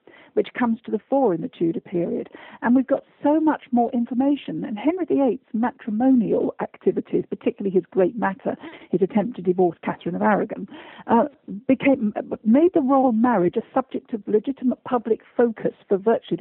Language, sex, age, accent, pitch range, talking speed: English, female, 50-69, British, 205-270 Hz, 170 wpm